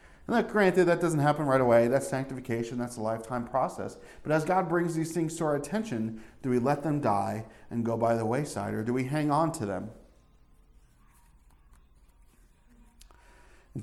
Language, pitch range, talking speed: English, 110-145 Hz, 180 wpm